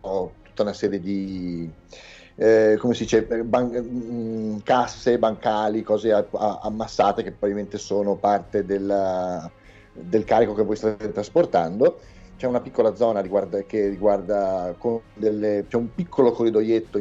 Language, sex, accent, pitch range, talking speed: Italian, male, native, 95-115 Hz, 145 wpm